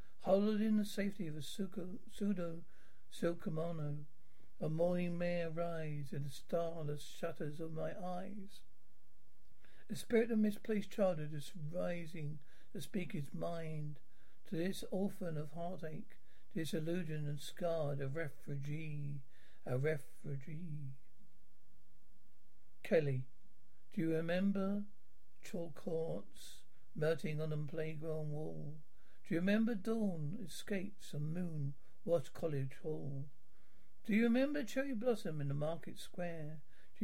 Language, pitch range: English, 150-195 Hz